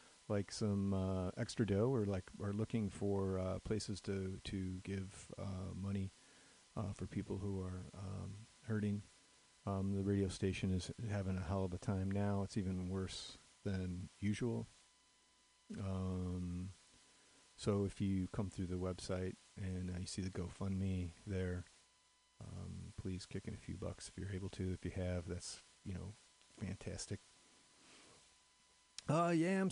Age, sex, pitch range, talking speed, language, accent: 40-59, male, 95-115 Hz, 155 wpm, English, American